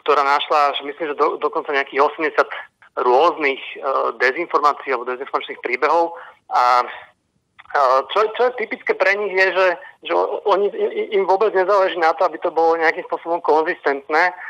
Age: 40-59